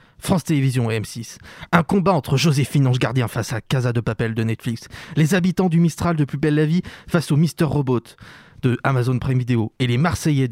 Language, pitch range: French, 125-185 Hz